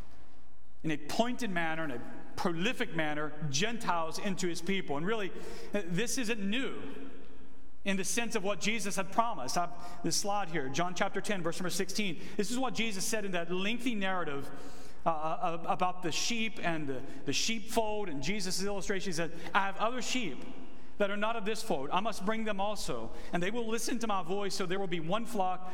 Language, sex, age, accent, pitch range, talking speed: English, male, 40-59, American, 180-225 Hz, 195 wpm